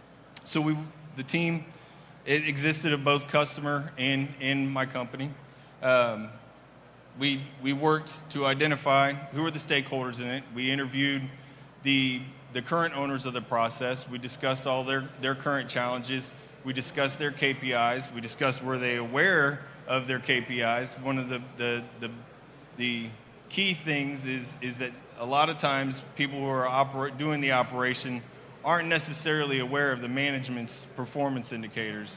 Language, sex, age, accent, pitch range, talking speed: English, male, 30-49, American, 125-145 Hz, 155 wpm